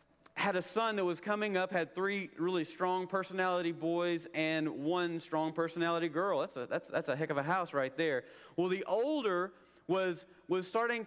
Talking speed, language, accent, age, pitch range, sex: 190 wpm, English, American, 40-59, 170-205 Hz, male